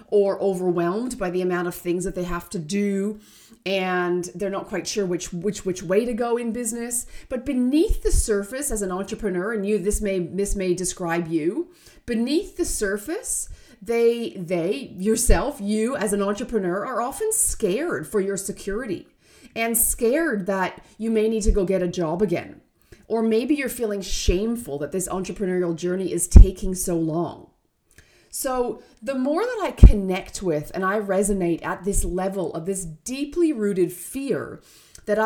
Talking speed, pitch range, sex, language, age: 170 wpm, 185-250 Hz, female, English, 30-49